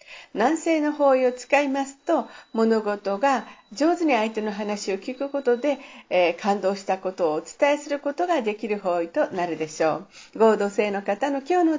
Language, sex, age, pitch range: Japanese, female, 50-69, 195-280 Hz